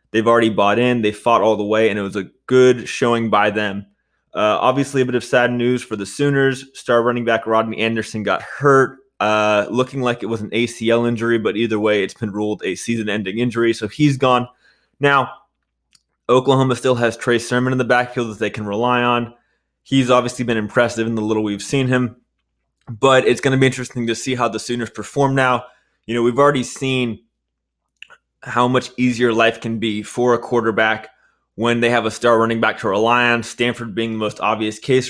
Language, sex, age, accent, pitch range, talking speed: English, male, 20-39, American, 110-125 Hz, 205 wpm